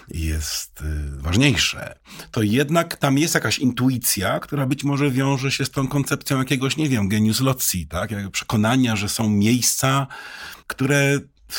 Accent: native